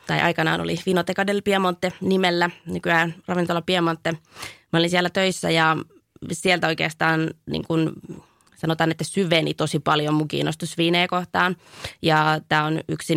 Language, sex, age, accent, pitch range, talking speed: Finnish, female, 20-39, native, 155-175 Hz, 140 wpm